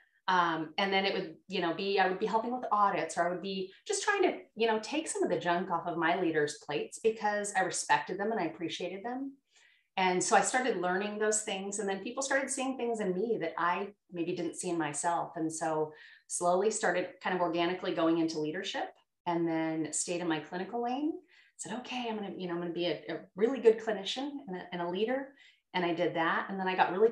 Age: 30-49